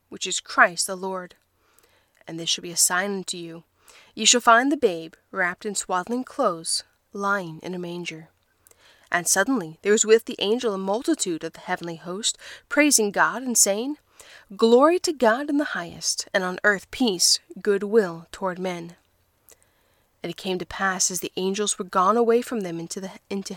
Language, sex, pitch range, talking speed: English, female, 185-240 Hz, 185 wpm